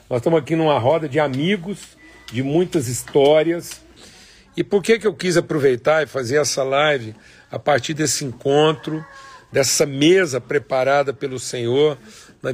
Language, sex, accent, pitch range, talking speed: Portuguese, male, Brazilian, 130-165 Hz, 150 wpm